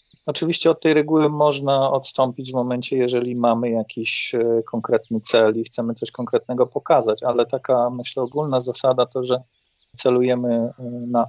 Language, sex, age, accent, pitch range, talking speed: Polish, male, 40-59, native, 120-145 Hz, 145 wpm